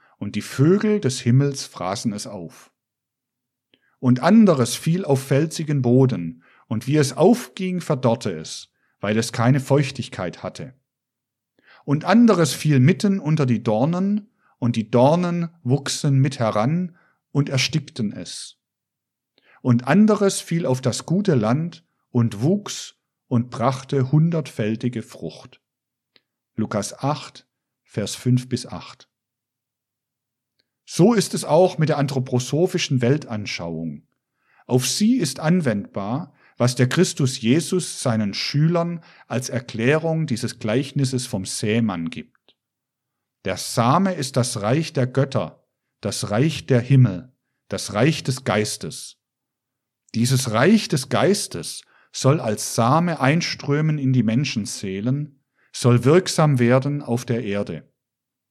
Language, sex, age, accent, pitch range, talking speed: German, male, 50-69, German, 120-155 Hz, 120 wpm